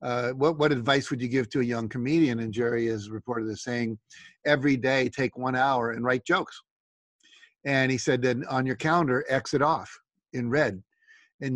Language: English